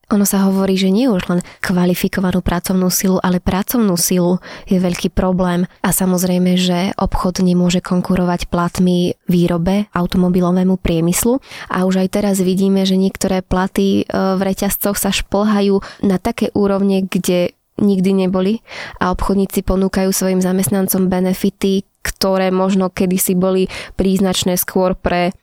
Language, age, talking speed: Slovak, 20-39, 135 wpm